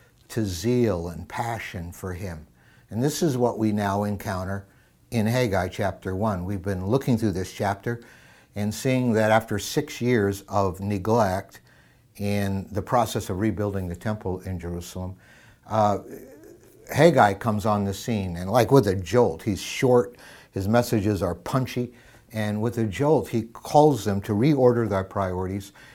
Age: 60-79